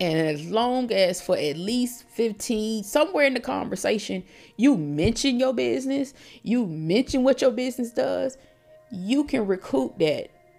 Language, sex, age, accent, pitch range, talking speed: English, female, 20-39, American, 160-265 Hz, 145 wpm